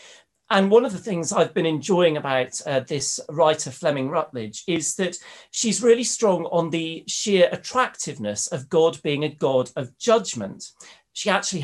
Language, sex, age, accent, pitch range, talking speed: English, male, 40-59, British, 130-180 Hz, 165 wpm